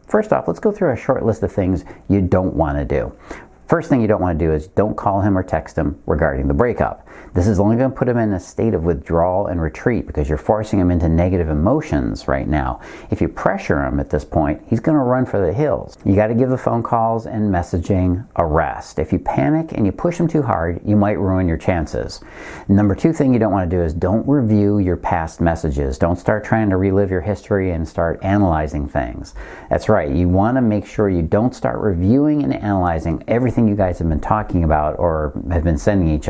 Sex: male